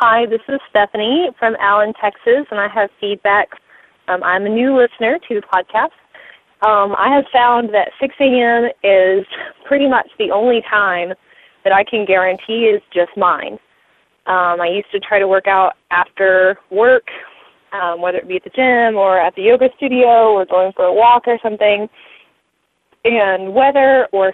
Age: 20-39